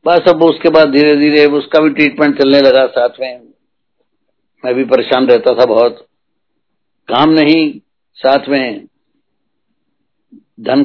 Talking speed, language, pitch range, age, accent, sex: 135 wpm, Hindi, 130-165 Hz, 60-79, native, male